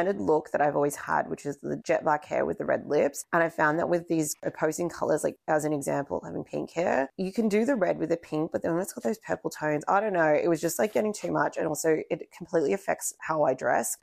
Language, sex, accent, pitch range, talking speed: English, female, Australian, 145-165 Hz, 275 wpm